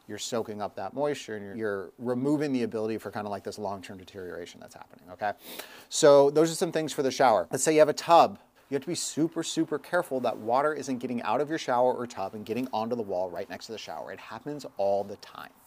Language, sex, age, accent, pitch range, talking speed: English, male, 30-49, American, 115-155 Hz, 255 wpm